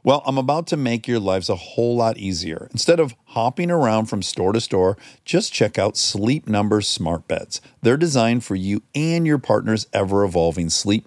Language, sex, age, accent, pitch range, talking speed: English, male, 50-69, American, 95-140 Hz, 190 wpm